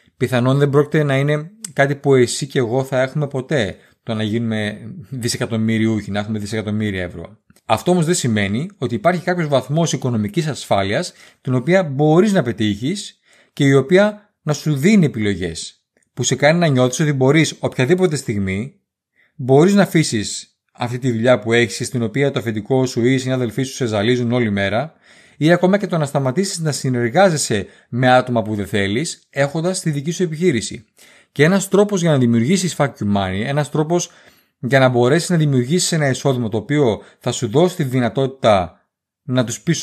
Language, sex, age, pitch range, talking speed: Greek, male, 30-49, 115-155 Hz, 180 wpm